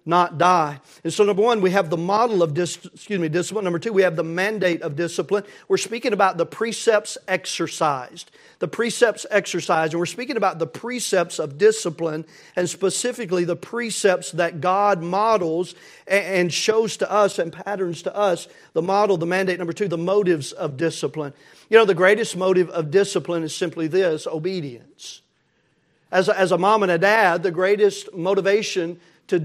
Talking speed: 180 wpm